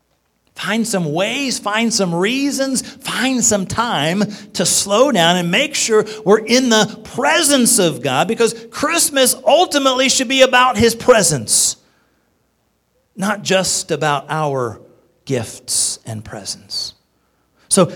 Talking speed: 125 wpm